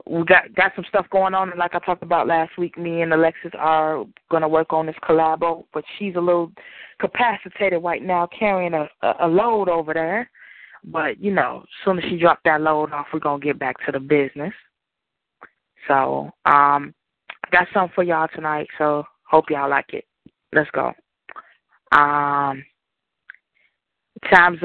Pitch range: 160-190 Hz